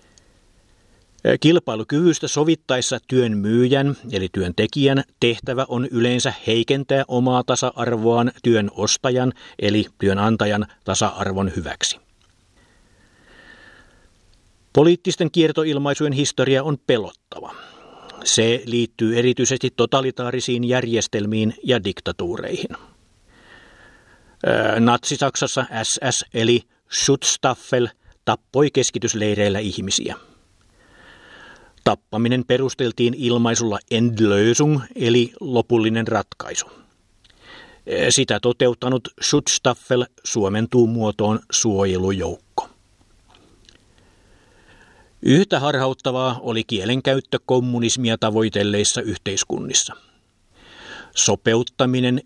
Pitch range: 105-130 Hz